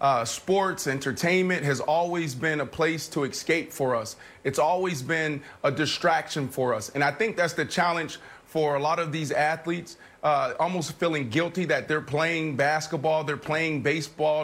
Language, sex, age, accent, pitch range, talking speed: English, male, 30-49, American, 155-200 Hz, 175 wpm